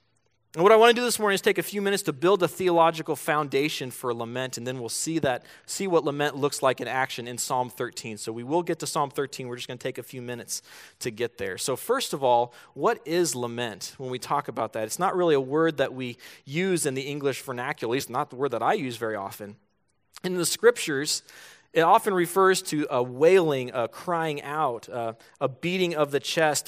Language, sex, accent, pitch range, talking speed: English, male, American, 125-160 Hz, 235 wpm